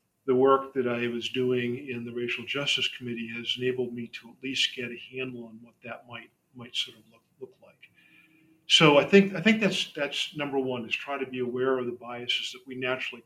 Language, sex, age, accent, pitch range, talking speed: English, male, 50-69, American, 120-145 Hz, 225 wpm